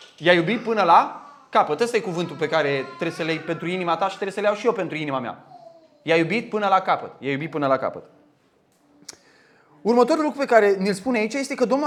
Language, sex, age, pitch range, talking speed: Romanian, male, 20-39, 180-260 Hz, 230 wpm